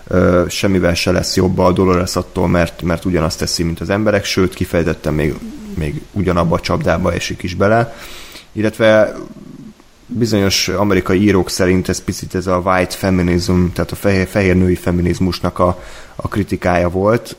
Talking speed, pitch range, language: 155 wpm, 90-95 Hz, Hungarian